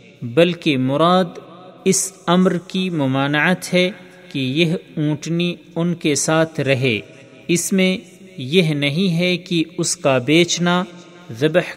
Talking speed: 120 wpm